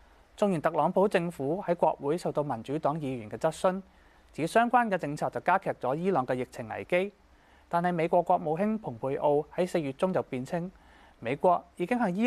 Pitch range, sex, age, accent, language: 125-180 Hz, male, 20-39, native, Chinese